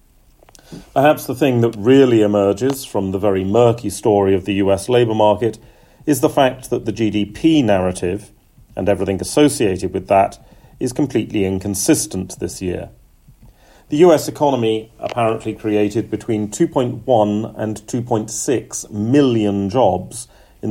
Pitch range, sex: 100-125 Hz, male